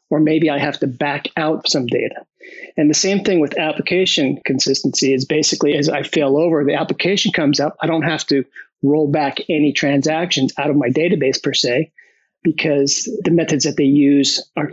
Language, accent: English, American